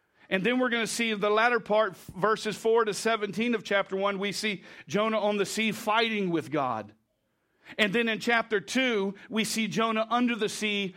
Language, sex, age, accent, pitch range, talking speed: English, male, 50-69, American, 165-215 Hz, 195 wpm